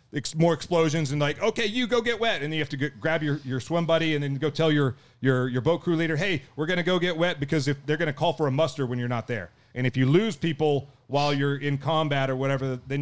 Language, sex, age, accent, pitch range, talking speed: English, male, 30-49, American, 130-155 Hz, 290 wpm